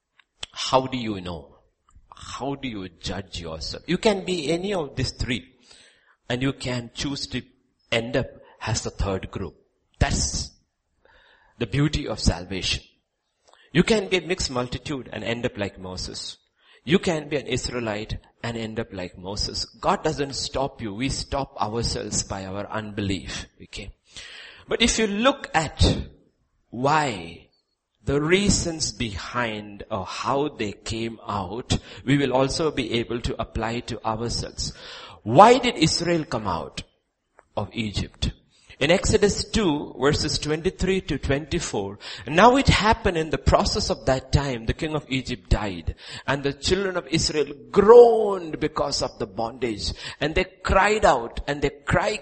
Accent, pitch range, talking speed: Indian, 110-160 Hz, 155 wpm